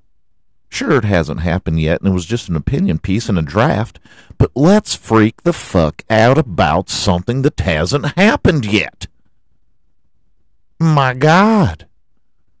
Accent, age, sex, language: American, 50-69, male, English